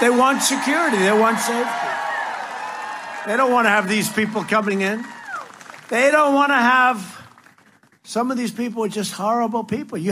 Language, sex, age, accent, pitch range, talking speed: English, male, 60-79, American, 200-265 Hz, 170 wpm